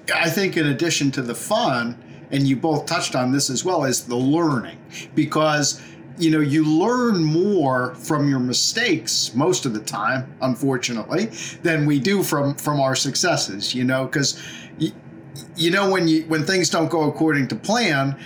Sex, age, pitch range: male, 50-69, 135-170 Hz